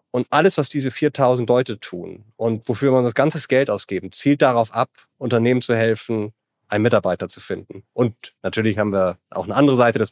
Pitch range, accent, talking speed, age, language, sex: 110-135 Hz, German, 200 wpm, 30-49, German, male